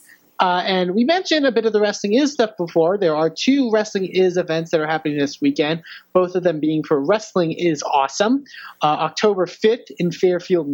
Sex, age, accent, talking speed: male, 30-49, American, 200 wpm